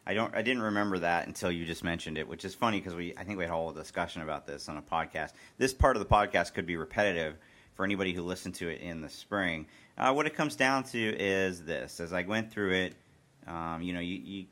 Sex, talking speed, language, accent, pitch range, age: male, 250 wpm, English, American, 80-100 Hz, 40-59